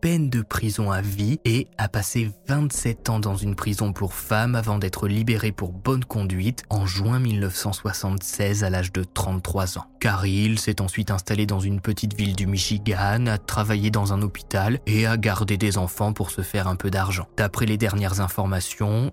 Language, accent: French, French